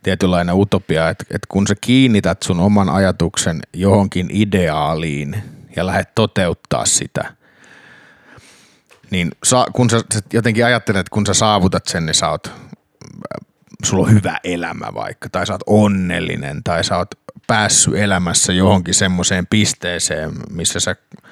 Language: Finnish